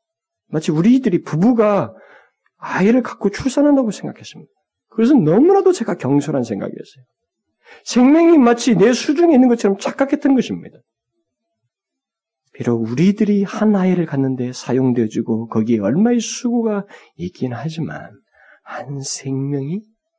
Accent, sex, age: native, male, 40-59